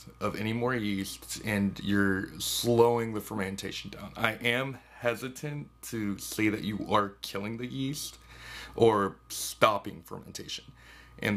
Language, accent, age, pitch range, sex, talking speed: English, American, 30-49, 95-115 Hz, male, 130 wpm